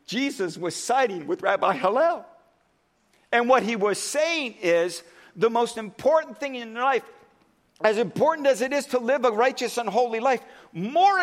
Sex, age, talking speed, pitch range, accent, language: male, 50-69, 165 wpm, 210-265 Hz, American, English